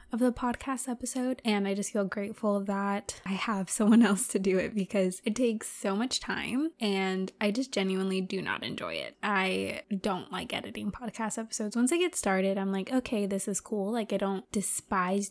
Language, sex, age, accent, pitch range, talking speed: English, female, 20-39, American, 200-240 Hz, 200 wpm